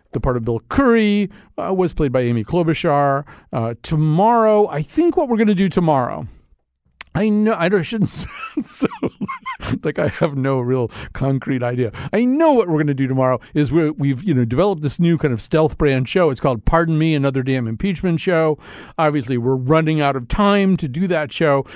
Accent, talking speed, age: American, 205 wpm, 50-69